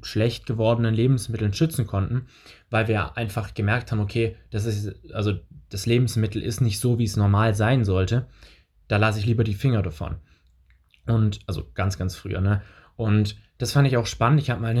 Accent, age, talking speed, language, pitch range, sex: German, 20-39, 185 wpm, German, 105-125 Hz, male